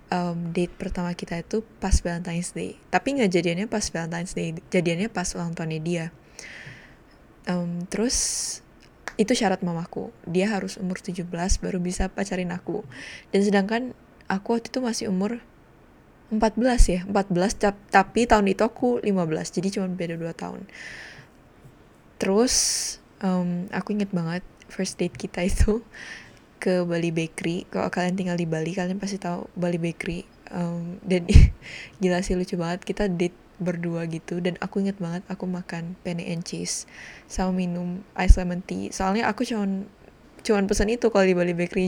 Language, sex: Indonesian, female